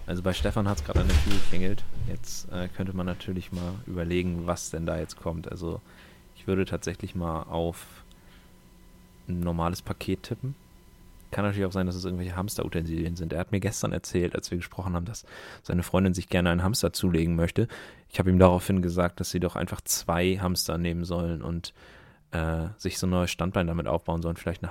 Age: 30-49